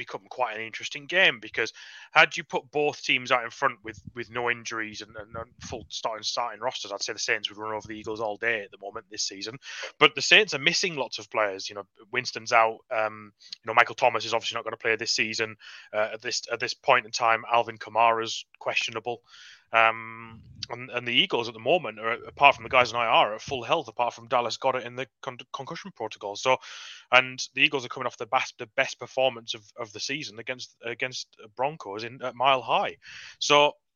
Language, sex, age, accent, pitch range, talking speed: English, male, 30-49, British, 110-130 Hz, 230 wpm